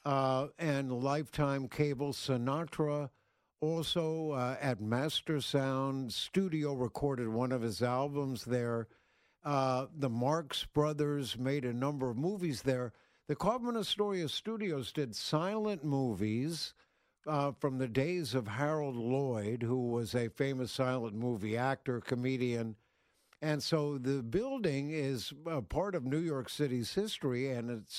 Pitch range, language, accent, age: 125-160 Hz, English, American, 60-79